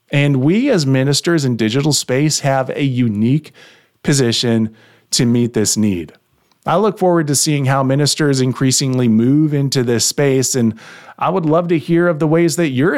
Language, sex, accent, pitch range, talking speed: English, male, American, 115-165 Hz, 175 wpm